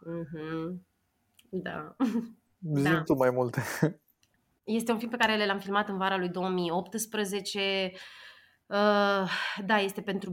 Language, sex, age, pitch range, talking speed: Romanian, female, 20-39, 170-195 Hz, 100 wpm